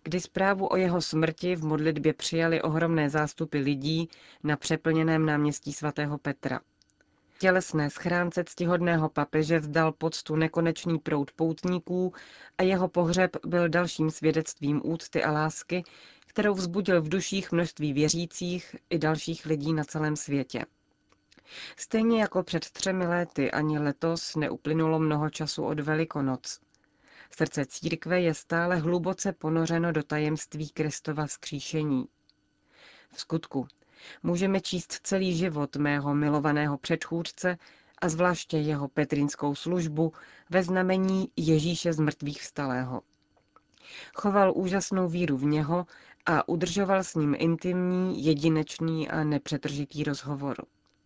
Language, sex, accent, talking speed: Czech, female, native, 120 wpm